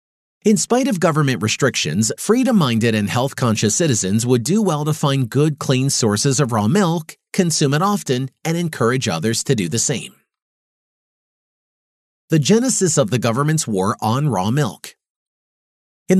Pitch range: 120-180 Hz